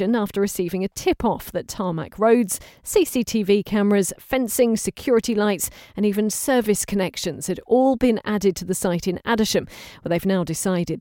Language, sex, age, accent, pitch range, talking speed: English, female, 40-59, British, 185-235 Hz, 170 wpm